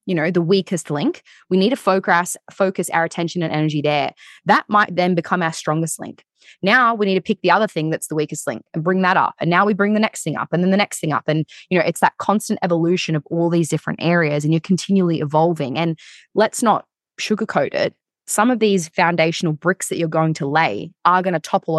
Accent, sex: Australian, female